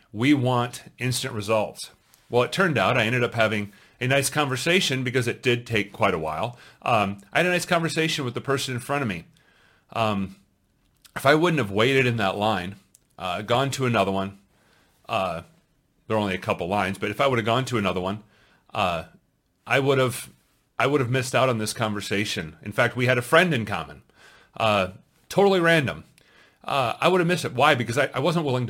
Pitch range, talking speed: 100-130 Hz, 210 wpm